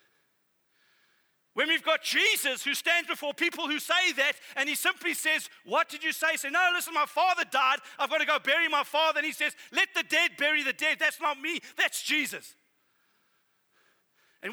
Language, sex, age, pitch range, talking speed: English, male, 40-59, 255-320 Hz, 190 wpm